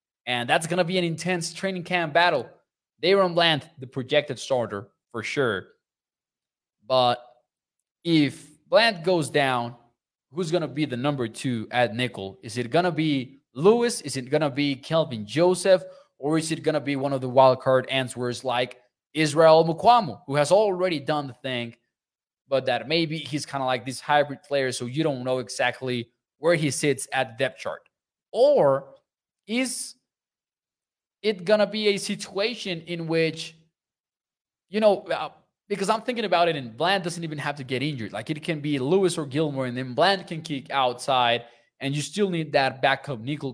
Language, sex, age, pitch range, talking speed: English, male, 20-39, 125-170 Hz, 180 wpm